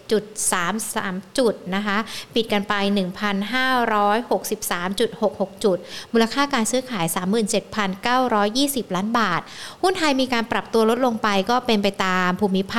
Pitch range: 195-240 Hz